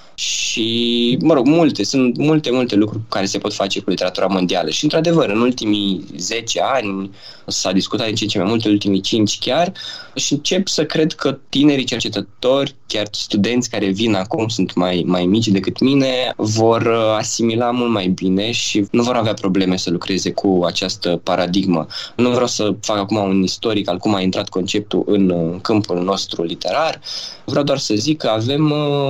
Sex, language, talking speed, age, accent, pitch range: male, Romanian, 175 wpm, 20-39, native, 95-125 Hz